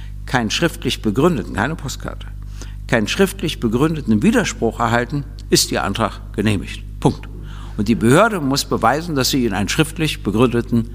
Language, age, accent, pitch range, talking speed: German, 60-79, German, 105-145 Hz, 140 wpm